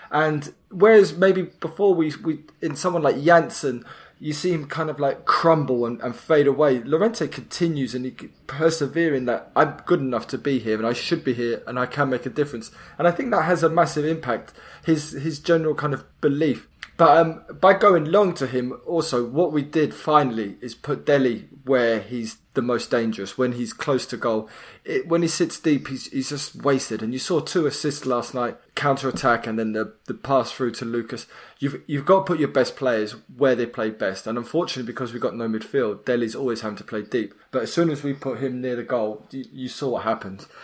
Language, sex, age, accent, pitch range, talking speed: English, male, 20-39, British, 120-155 Hz, 220 wpm